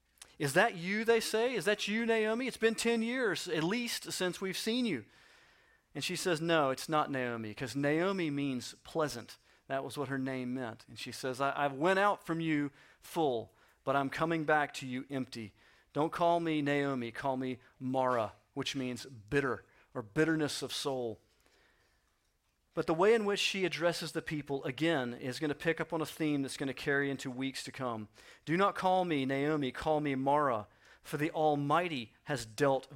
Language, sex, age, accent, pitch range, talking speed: English, male, 40-59, American, 130-160 Hz, 195 wpm